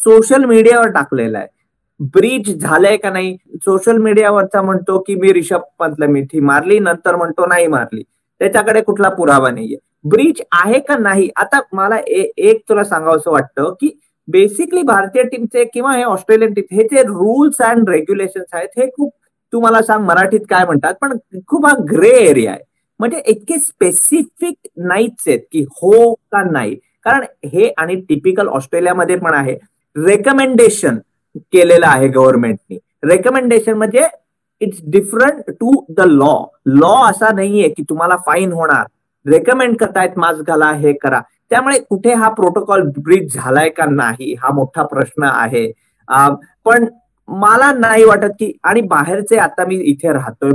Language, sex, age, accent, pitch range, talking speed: Marathi, male, 50-69, native, 170-240 Hz, 150 wpm